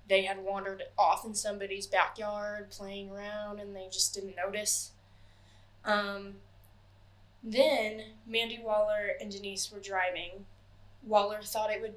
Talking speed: 130 wpm